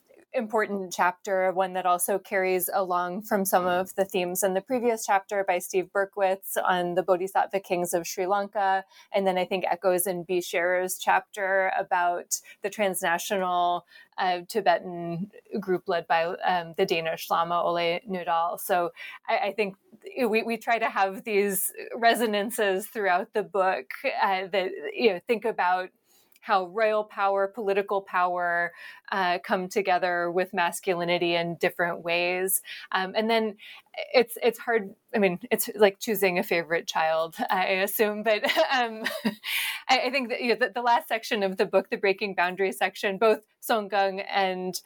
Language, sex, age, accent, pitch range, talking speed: English, female, 20-39, American, 180-215 Hz, 160 wpm